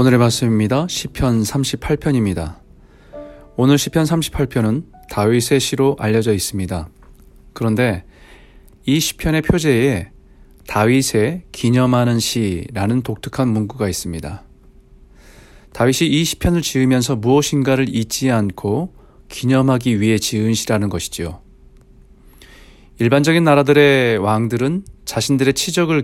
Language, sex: Korean, male